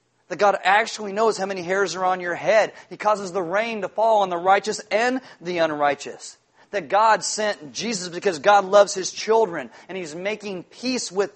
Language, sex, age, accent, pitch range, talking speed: English, male, 40-59, American, 180-225 Hz, 195 wpm